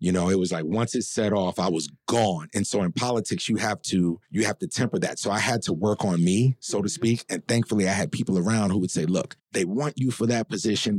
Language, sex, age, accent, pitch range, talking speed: English, male, 30-49, American, 95-120 Hz, 275 wpm